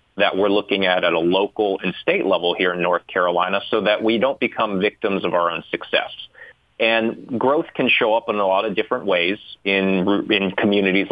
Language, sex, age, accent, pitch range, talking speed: English, male, 30-49, American, 95-110 Hz, 205 wpm